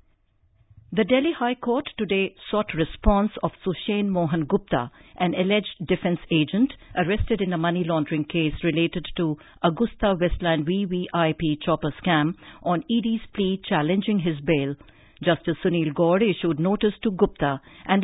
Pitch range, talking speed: 160-205 Hz, 140 wpm